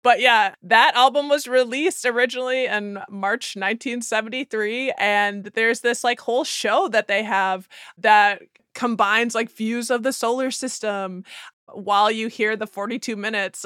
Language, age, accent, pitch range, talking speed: English, 20-39, American, 205-255 Hz, 145 wpm